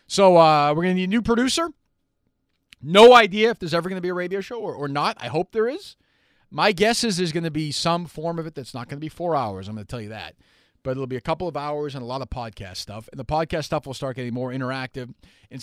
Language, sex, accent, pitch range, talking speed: English, male, American, 110-170 Hz, 285 wpm